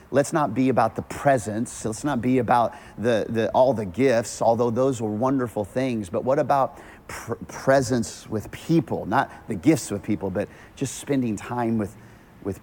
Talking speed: 180 wpm